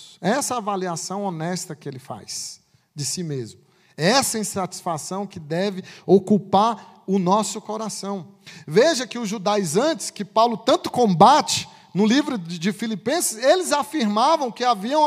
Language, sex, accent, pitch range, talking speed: Portuguese, male, Brazilian, 205-300 Hz, 130 wpm